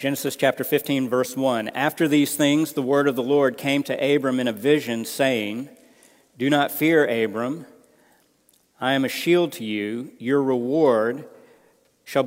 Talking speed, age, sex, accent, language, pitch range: 160 wpm, 50-69, male, American, English, 125-155 Hz